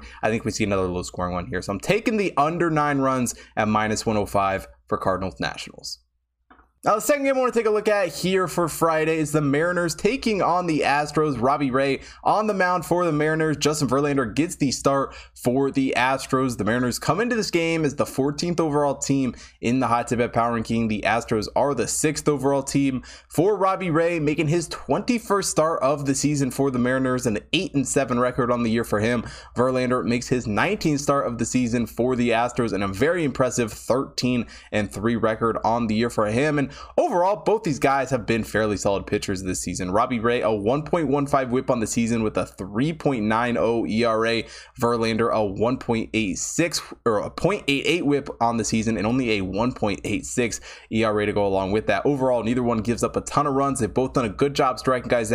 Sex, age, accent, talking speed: male, 20-39, American, 205 wpm